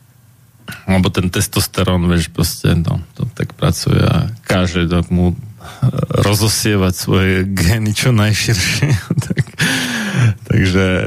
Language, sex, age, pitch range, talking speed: Slovak, male, 40-59, 95-120 Hz, 105 wpm